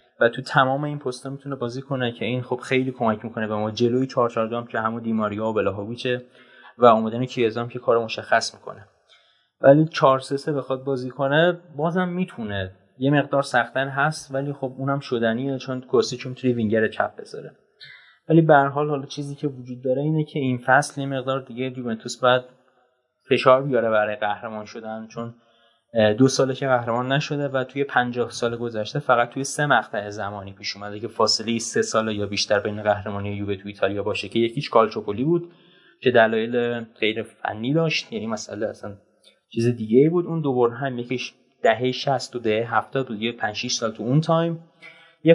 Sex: male